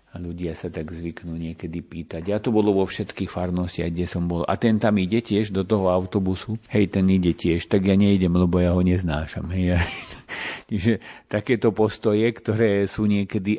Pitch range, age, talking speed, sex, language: 90-100 Hz, 50-69, 195 wpm, male, Slovak